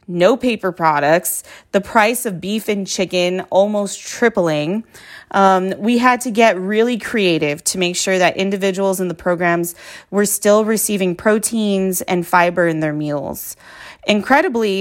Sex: female